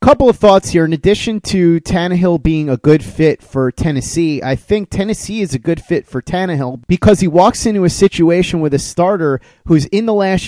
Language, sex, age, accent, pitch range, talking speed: English, male, 30-49, American, 145-180 Hz, 205 wpm